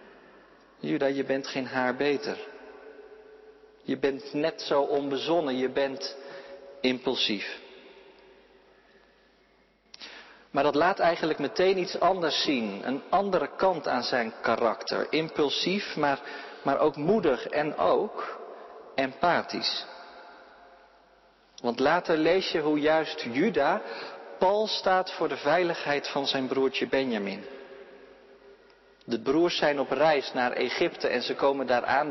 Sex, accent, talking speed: male, Dutch, 120 wpm